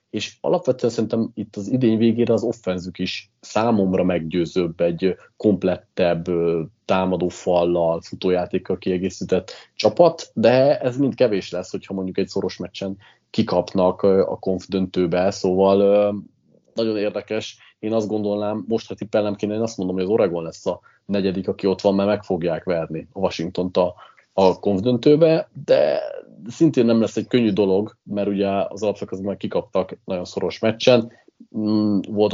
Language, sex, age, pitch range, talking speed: Hungarian, male, 30-49, 95-110 Hz, 145 wpm